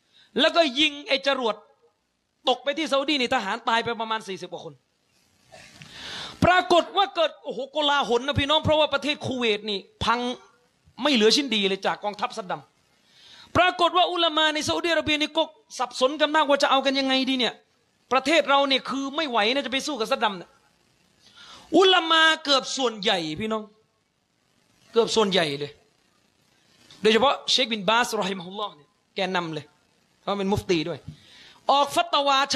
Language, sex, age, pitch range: Thai, male, 30-49, 215-290 Hz